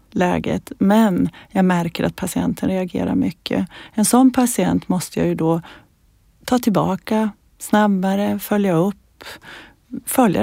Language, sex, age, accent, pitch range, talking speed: Swedish, female, 30-49, native, 170-215 Hz, 120 wpm